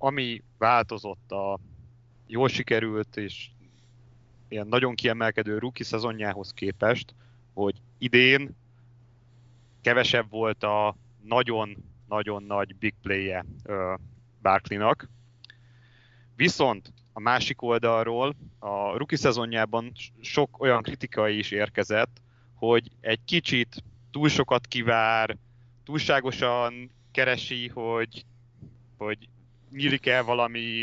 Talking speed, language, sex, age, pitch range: 90 wpm, Hungarian, male, 30-49, 110-120 Hz